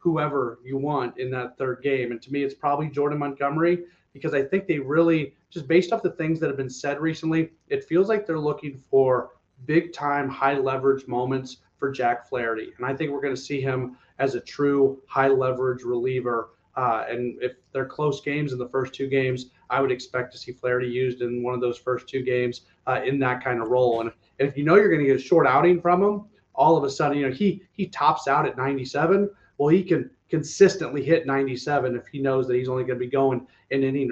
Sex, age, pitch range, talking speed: male, 30-49, 125-145 Hz, 230 wpm